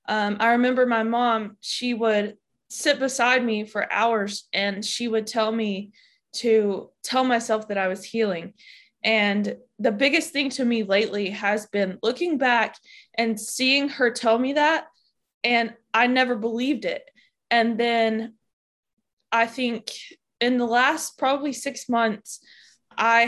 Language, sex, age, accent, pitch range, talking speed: English, female, 20-39, American, 220-265 Hz, 145 wpm